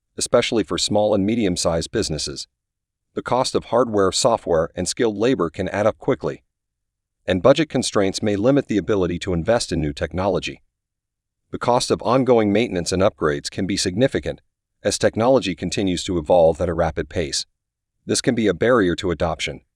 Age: 40-59